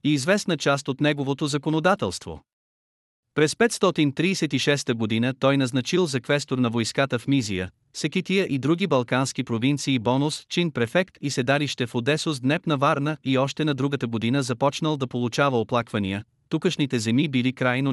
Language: Bulgarian